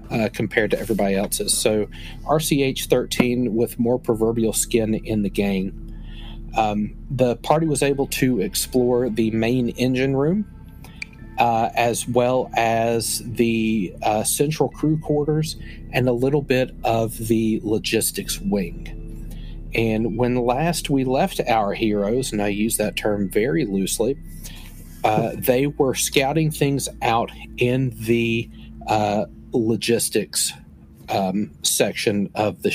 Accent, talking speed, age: American, 130 wpm, 40-59